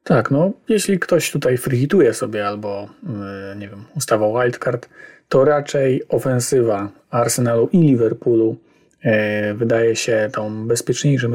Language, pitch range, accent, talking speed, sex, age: Polish, 115-145 Hz, native, 125 wpm, male, 40-59